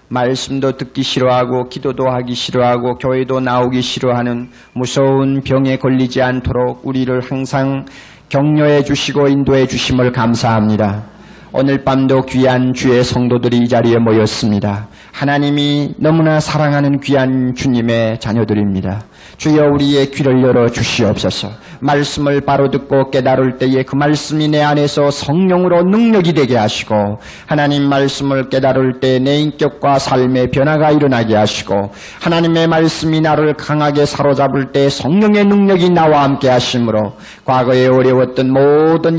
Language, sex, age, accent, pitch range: Korean, male, 40-59, native, 120-145 Hz